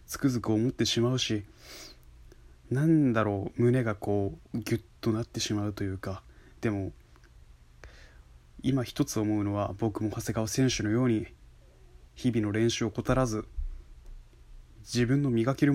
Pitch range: 100-120 Hz